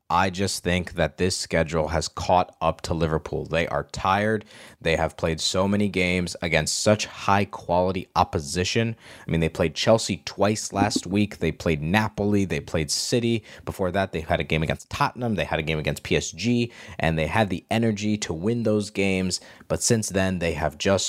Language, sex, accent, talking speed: English, male, American, 190 wpm